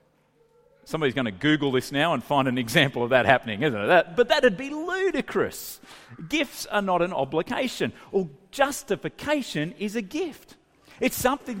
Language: English